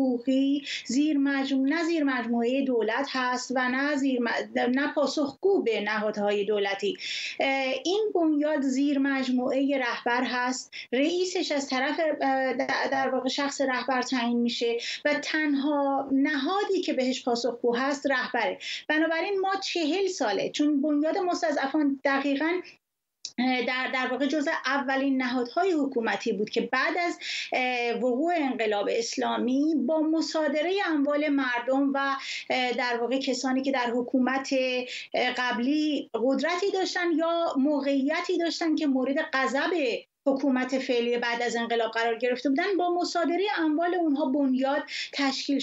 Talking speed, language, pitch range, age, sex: 125 wpm, Persian, 255-320 Hz, 30-49, female